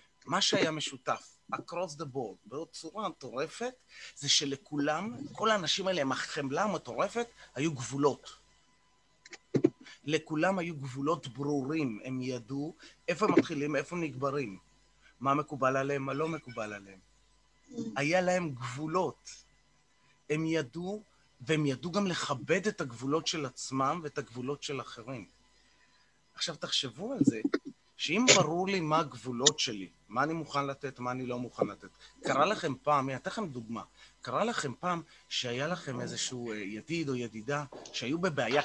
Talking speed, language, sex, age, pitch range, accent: 140 wpm, Hebrew, male, 30-49, 130-170 Hz, native